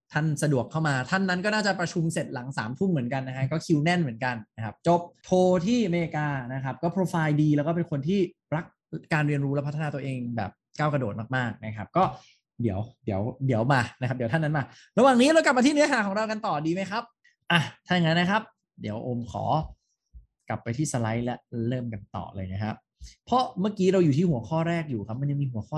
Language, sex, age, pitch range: English, male, 20-39, 125-175 Hz